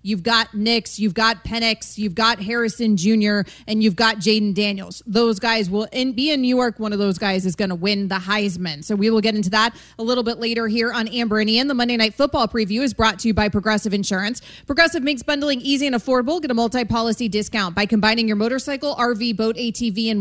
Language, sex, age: English, female, 30-49